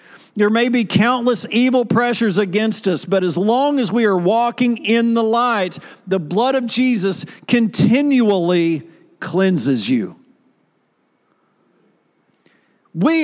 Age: 50-69